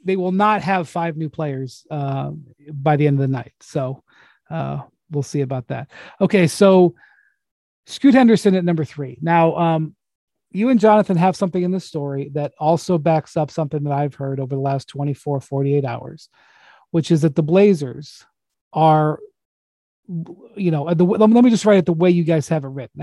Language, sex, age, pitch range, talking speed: English, male, 40-59, 145-180 Hz, 190 wpm